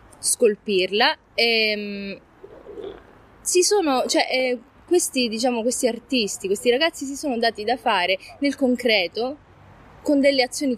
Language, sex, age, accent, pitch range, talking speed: Italian, female, 20-39, native, 200-255 Hz, 120 wpm